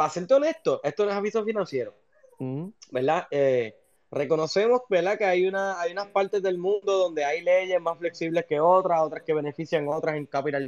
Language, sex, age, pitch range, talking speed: Spanish, male, 20-39, 160-225 Hz, 185 wpm